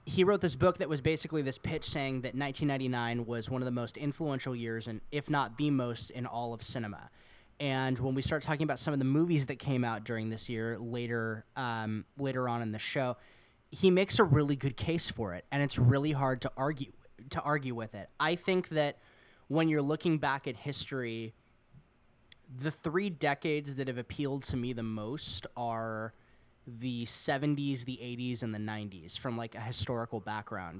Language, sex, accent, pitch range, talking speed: English, male, American, 115-145 Hz, 200 wpm